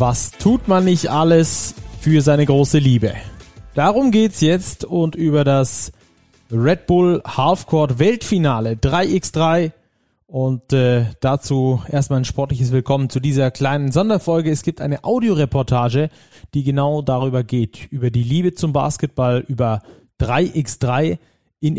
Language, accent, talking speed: German, German, 130 wpm